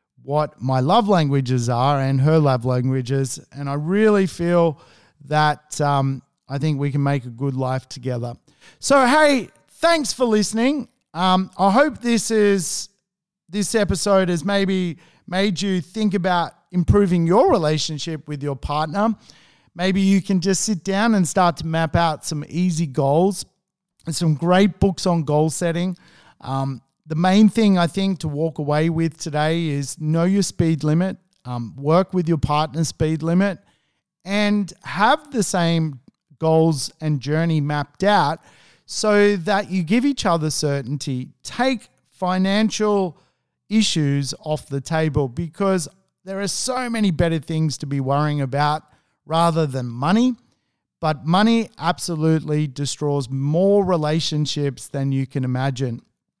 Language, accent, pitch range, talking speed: English, Australian, 145-195 Hz, 145 wpm